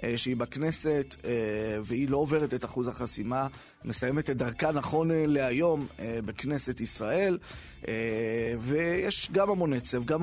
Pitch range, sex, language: 125-170 Hz, male, Hebrew